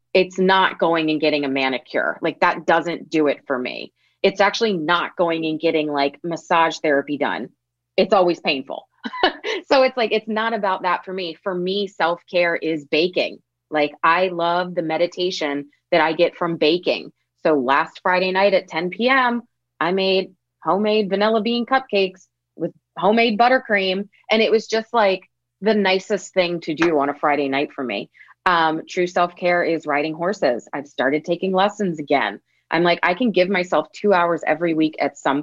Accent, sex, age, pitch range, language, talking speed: American, female, 30-49, 155-200 Hz, English, 180 wpm